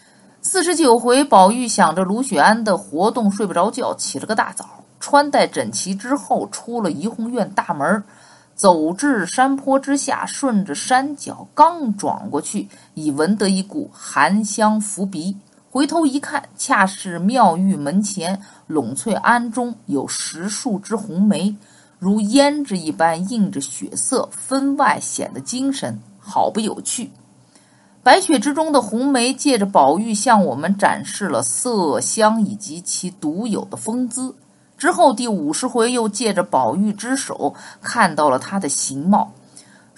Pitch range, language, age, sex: 195-255 Hz, Chinese, 50-69, female